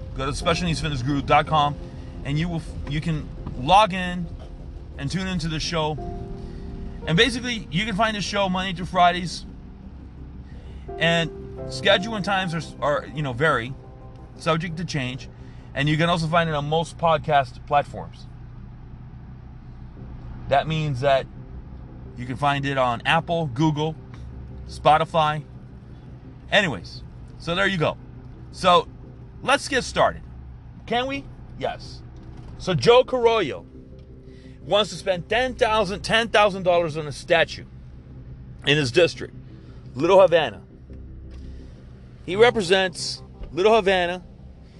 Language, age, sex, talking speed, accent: English, 30-49, male, 120 wpm, American